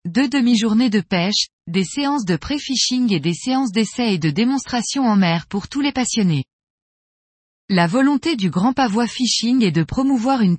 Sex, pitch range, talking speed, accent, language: female, 185-245 Hz, 175 wpm, French, French